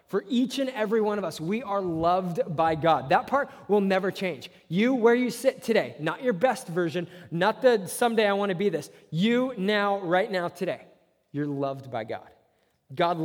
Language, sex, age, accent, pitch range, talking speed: English, male, 20-39, American, 165-215 Hz, 200 wpm